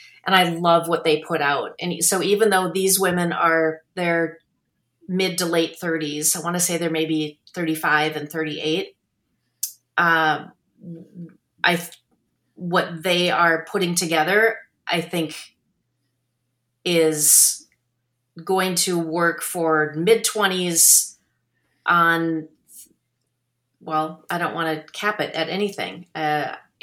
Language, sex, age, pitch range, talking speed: English, female, 30-49, 155-190 Hz, 125 wpm